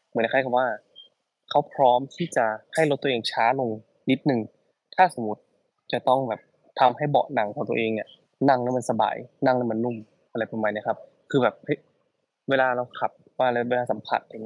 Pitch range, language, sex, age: 115-135 Hz, Thai, male, 20-39